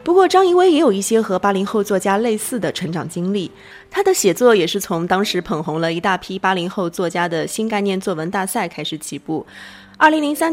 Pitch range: 175-245 Hz